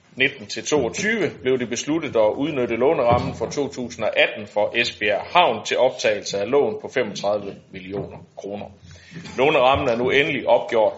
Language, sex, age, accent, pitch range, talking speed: Danish, male, 30-49, native, 105-140 Hz, 135 wpm